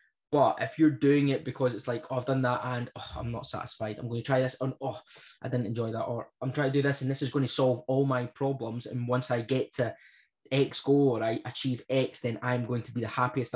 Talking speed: 270 wpm